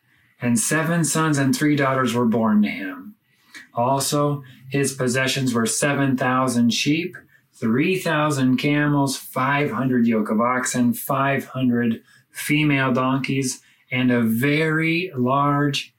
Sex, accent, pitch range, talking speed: male, American, 125-150 Hz, 110 wpm